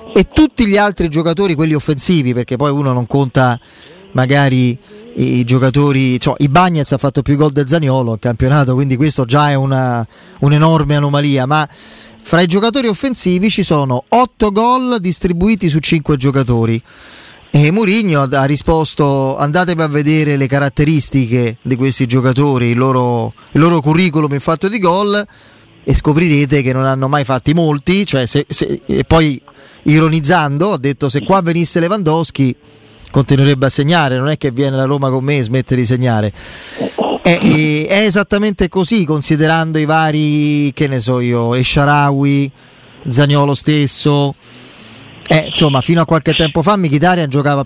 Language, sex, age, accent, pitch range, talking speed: Italian, male, 30-49, native, 130-165 Hz, 160 wpm